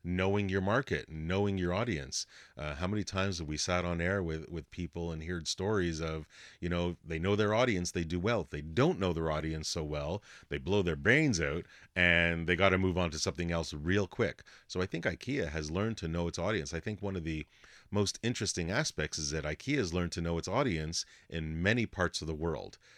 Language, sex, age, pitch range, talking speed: English, male, 30-49, 80-100 Hz, 230 wpm